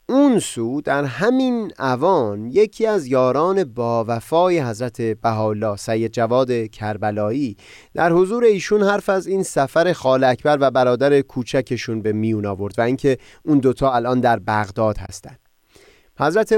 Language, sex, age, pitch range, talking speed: Persian, male, 30-49, 115-170 Hz, 140 wpm